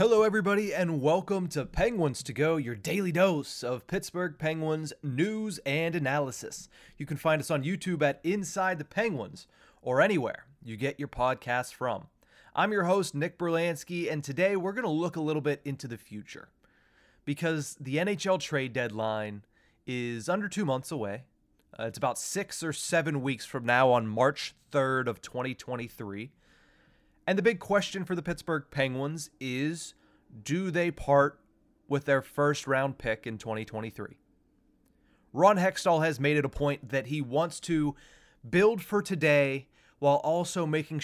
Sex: male